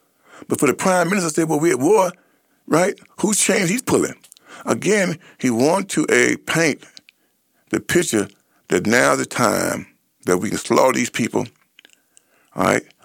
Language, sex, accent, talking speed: English, male, American, 165 wpm